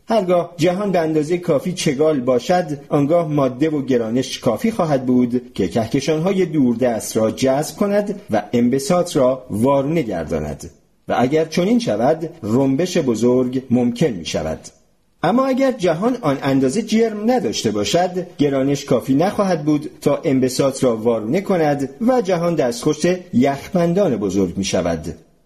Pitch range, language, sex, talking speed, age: 125-195 Hz, Persian, male, 140 wpm, 40-59